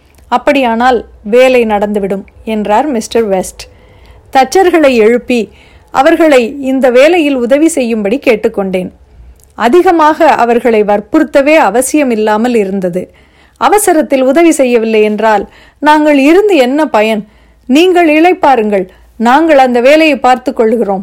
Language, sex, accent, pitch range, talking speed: Tamil, female, native, 215-285 Hz, 95 wpm